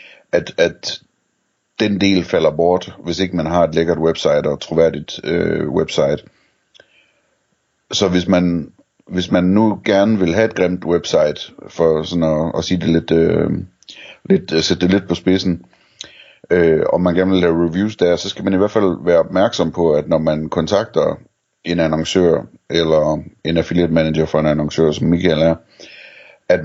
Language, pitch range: Danish, 80-90 Hz